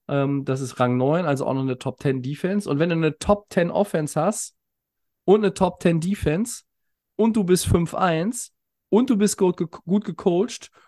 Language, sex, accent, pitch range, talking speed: German, male, German, 145-205 Hz, 160 wpm